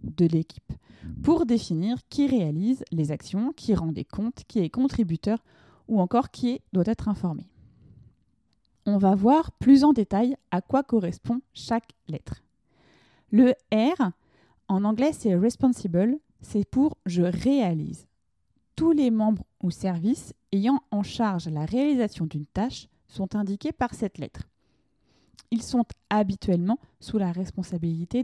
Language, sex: French, female